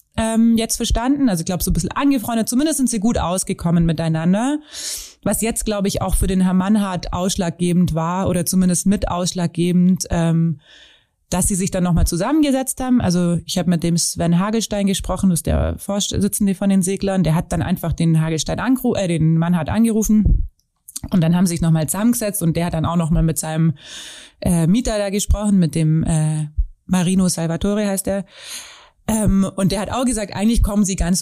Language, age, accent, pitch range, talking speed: German, 30-49, German, 170-215 Hz, 190 wpm